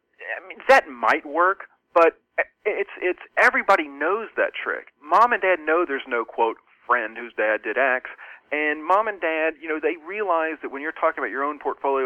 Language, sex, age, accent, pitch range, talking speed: English, male, 40-59, American, 130-165 Hz, 200 wpm